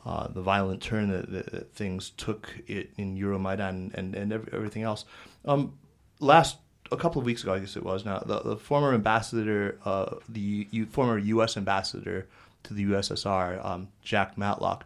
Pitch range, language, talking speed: 95-110 Hz, English, 180 wpm